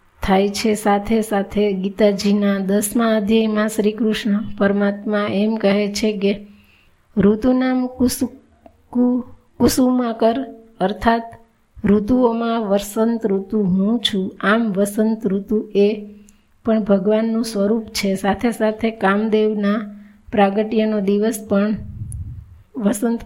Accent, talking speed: native, 40 wpm